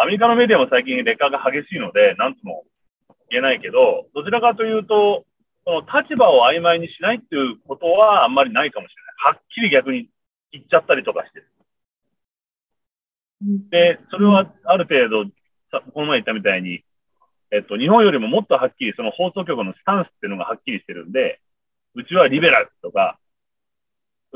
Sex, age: male, 40-59